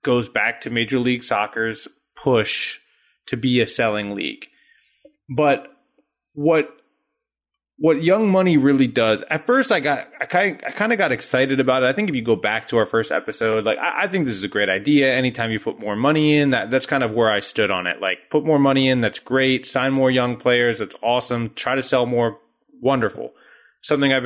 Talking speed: 215 wpm